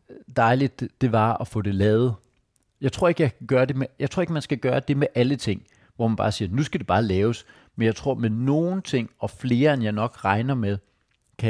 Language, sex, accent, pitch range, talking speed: Danish, male, native, 105-130 Hz, 240 wpm